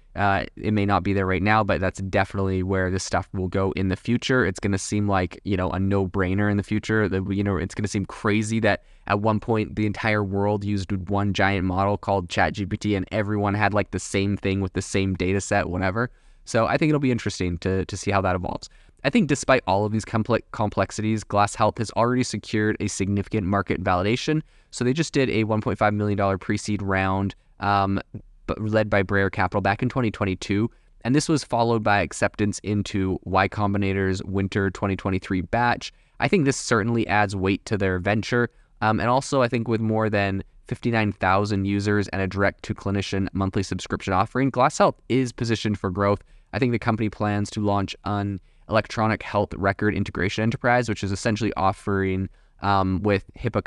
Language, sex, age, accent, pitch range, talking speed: English, male, 20-39, American, 95-110 Hz, 195 wpm